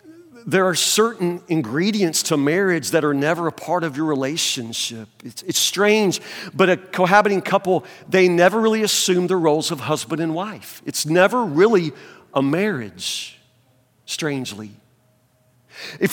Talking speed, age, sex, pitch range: 140 wpm, 50-69, male, 140-210 Hz